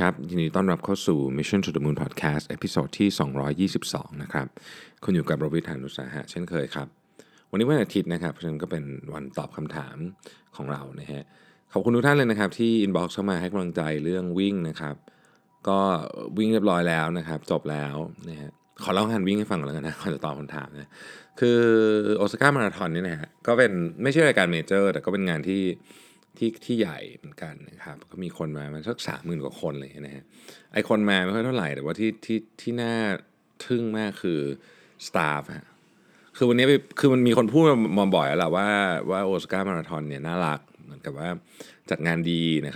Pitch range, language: 75-105 Hz, Thai